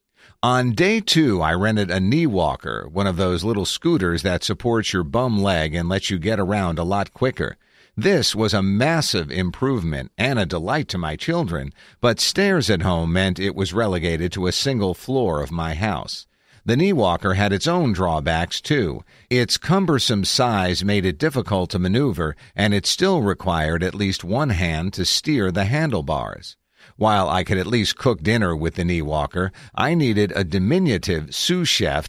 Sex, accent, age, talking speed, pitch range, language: male, American, 50-69, 175 wpm, 95-125 Hz, English